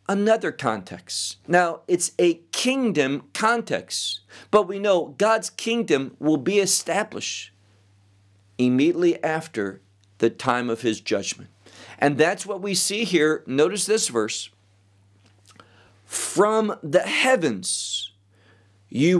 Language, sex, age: English, male, 50-69